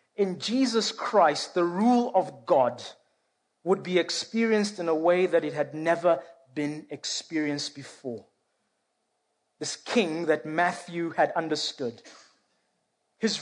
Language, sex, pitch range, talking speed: English, male, 175-245 Hz, 120 wpm